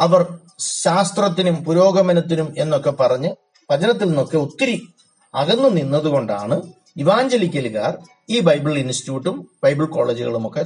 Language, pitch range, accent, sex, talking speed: Malayalam, 135-180 Hz, native, male, 90 wpm